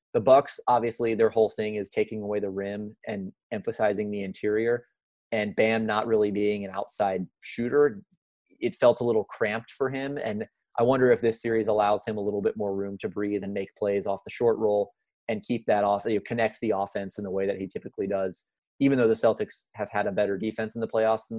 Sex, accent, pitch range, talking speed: male, American, 105-115 Hz, 225 wpm